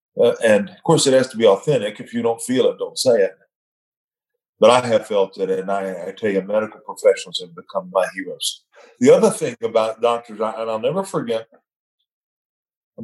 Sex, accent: male, American